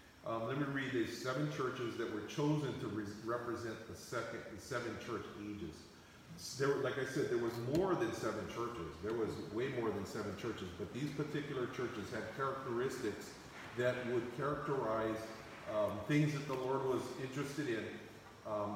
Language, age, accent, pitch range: English, 40-59, American, 105-135 Hz